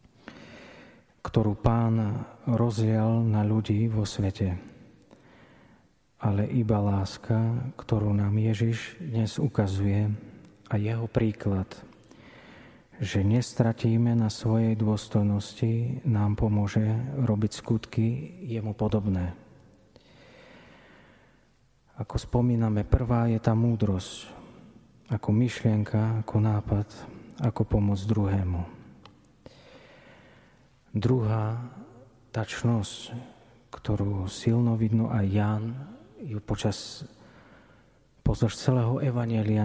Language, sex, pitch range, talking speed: Slovak, male, 105-120 Hz, 80 wpm